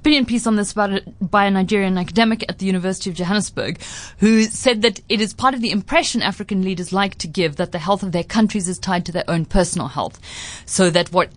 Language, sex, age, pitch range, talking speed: English, female, 30-49, 170-220 Hz, 225 wpm